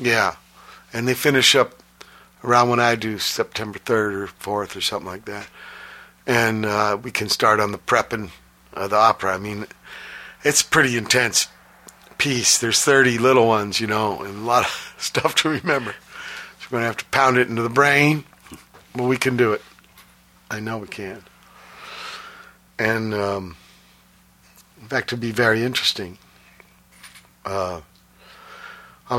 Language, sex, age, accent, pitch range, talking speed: English, male, 60-79, American, 105-125 Hz, 165 wpm